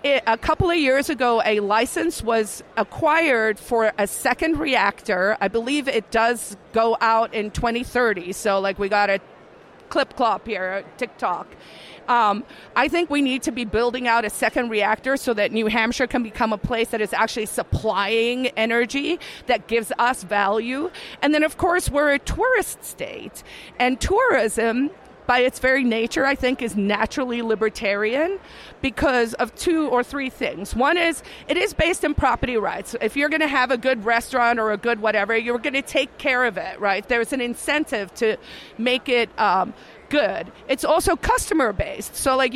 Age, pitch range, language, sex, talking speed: 40-59, 225-295 Hz, English, female, 175 wpm